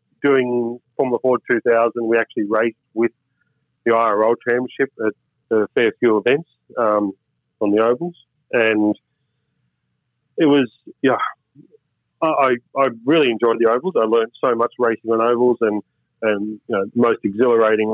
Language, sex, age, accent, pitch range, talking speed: English, male, 30-49, Australian, 110-120 Hz, 150 wpm